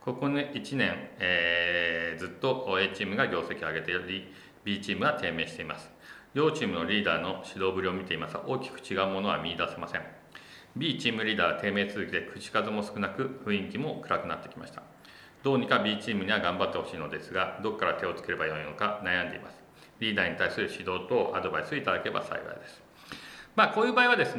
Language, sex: Japanese, male